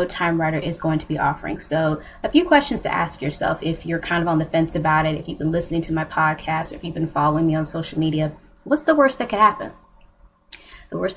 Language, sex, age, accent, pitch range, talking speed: English, female, 20-39, American, 155-180 Hz, 245 wpm